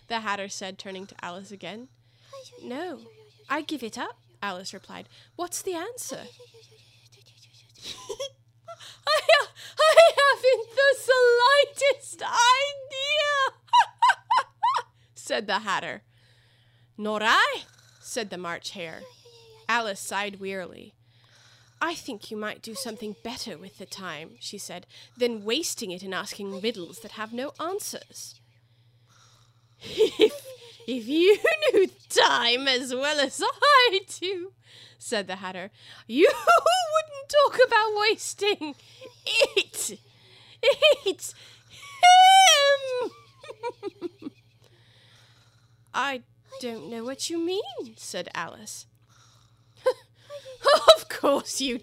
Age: 20-39